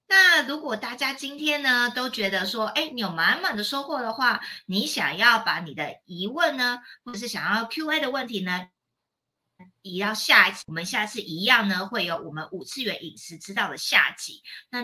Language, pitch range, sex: Chinese, 185-245 Hz, female